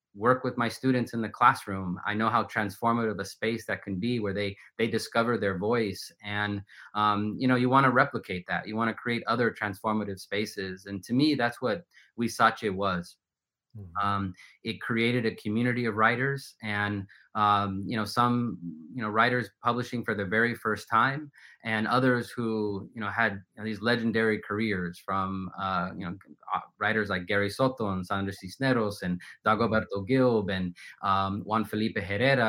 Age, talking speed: 20-39, 175 wpm